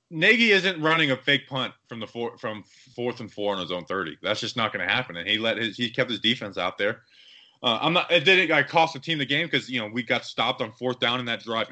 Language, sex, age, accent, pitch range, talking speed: English, male, 20-39, American, 115-160 Hz, 285 wpm